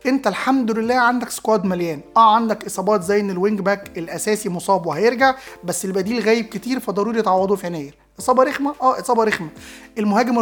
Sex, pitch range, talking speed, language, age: male, 195-240 Hz, 165 wpm, Arabic, 20-39